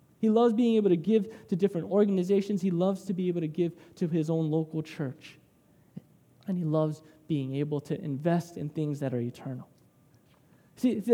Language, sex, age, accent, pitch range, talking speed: English, male, 20-39, American, 165-220 Hz, 185 wpm